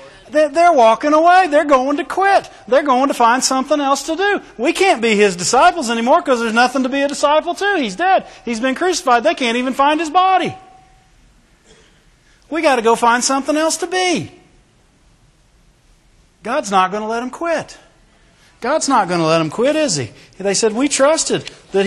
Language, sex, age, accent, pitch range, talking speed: English, male, 40-59, American, 175-275 Hz, 190 wpm